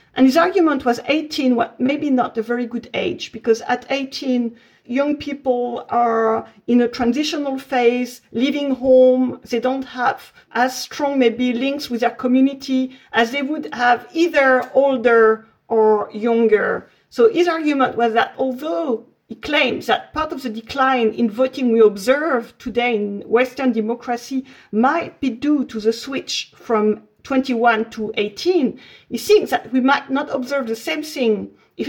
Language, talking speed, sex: English, 160 wpm, female